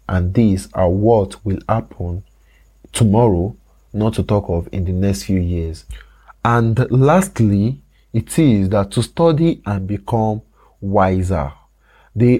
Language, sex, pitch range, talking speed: English, male, 95-125 Hz, 130 wpm